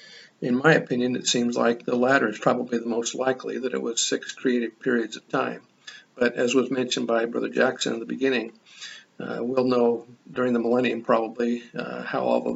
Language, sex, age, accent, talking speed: English, male, 50-69, American, 200 wpm